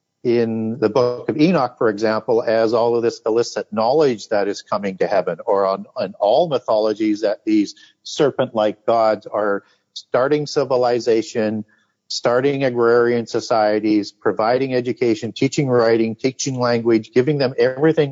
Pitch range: 110-130 Hz